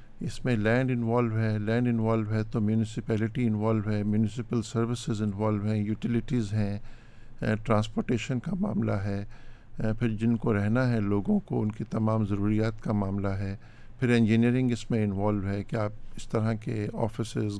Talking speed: 170 wpm